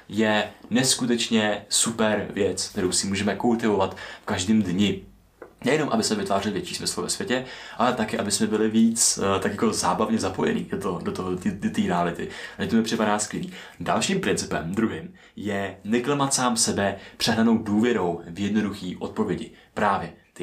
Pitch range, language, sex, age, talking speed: 90-115 Hz, Czech, male, 20-39, 150 wpm